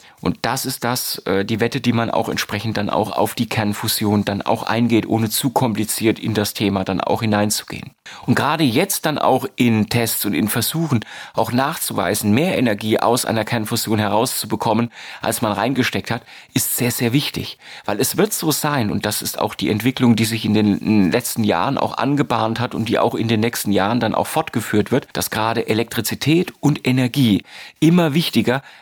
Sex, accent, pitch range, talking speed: male, German, 105-125 Hz, 190 wpm